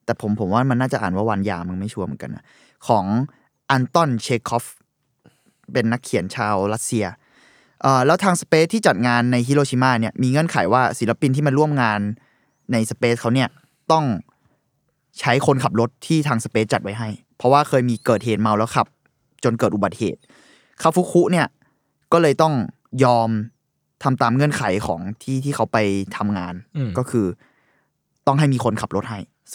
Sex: male